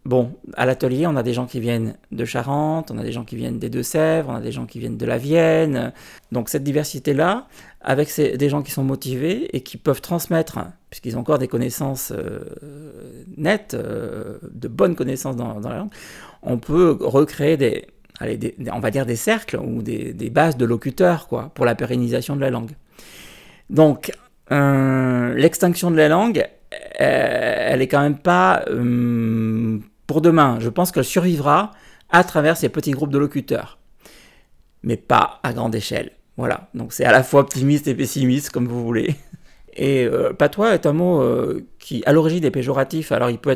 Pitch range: 120-155 Hz